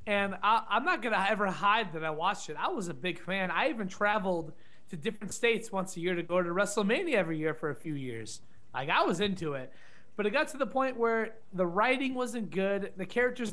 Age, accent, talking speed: 20-39, American, 235 wpm